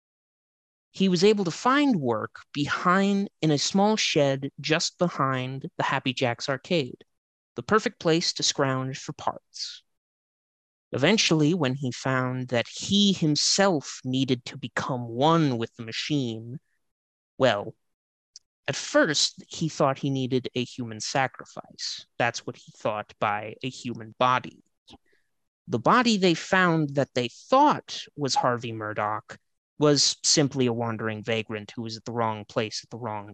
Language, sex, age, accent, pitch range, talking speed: English, male, 30-49, American, 120-160 Hz, 145 wpm